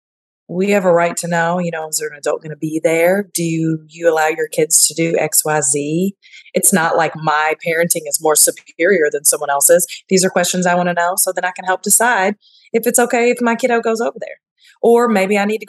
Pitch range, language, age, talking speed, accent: 165-195 Hz, English, 20-39, 250 wpm, American